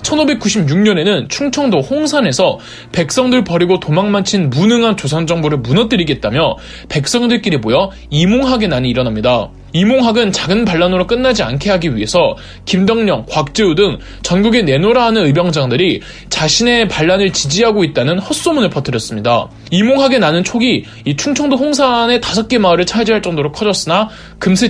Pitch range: 145-230 Hz